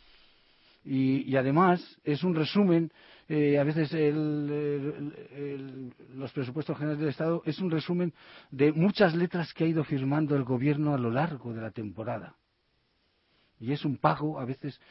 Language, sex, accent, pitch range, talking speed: Spanish, male, Spanish, 125-155 Hz, 155 wpm